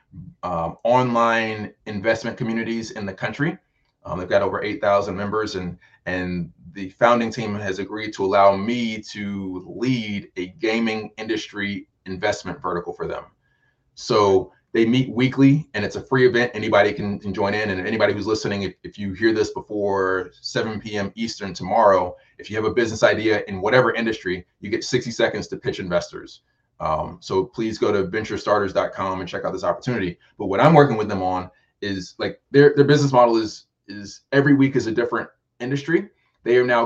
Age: 20-39